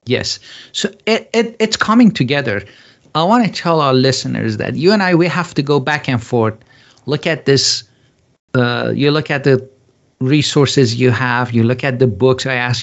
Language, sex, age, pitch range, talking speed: English, male, 50-69, 125-150 Hz, 195 wpm